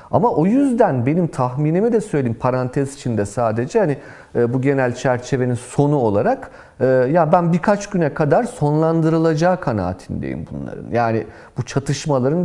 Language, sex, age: Turkish, male, 40-59